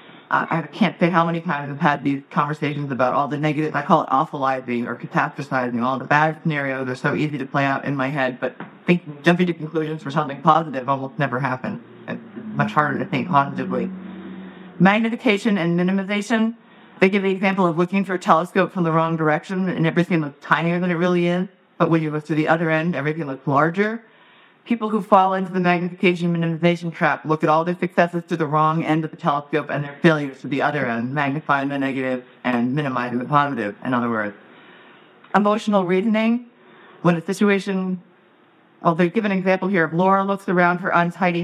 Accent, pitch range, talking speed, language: American, 145-185 Hz, 200 wpm, English